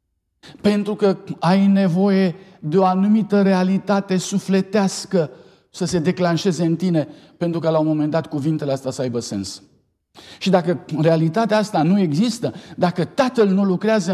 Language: Romanian